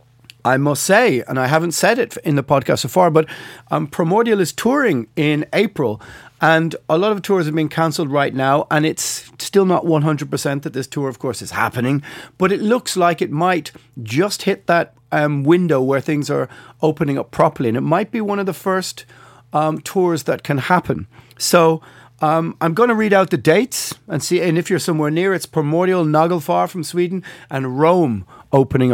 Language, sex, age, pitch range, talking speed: English, male, 40-59, 135-175 Hz, 200 wpm